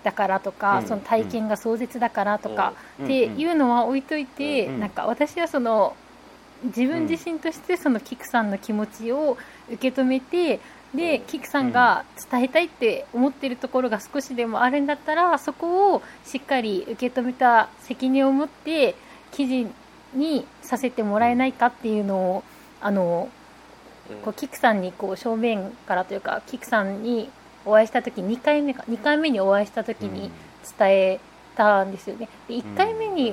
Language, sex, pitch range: Japanese, female, 215-285 Hz